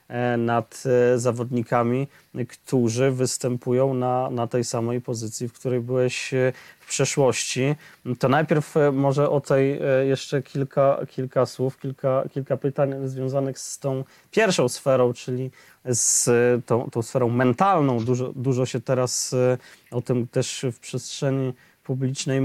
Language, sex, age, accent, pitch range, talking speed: Polish, male, 20-39, native, 125-145 Hz, 125 wpm